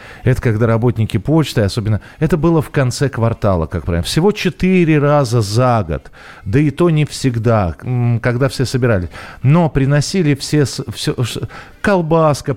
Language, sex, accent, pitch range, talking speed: Russian, male, native, 110-155 Hz, 145 wpm